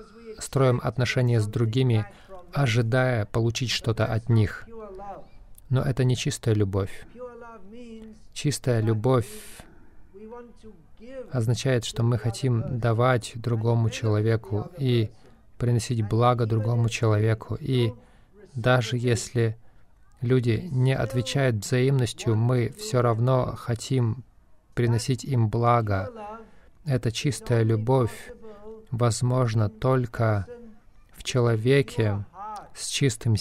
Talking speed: 90 wpm